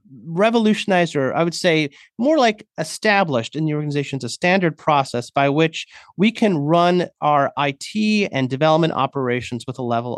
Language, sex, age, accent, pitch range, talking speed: English, male, 30-49, American, 145-190 Hz, 160 wpm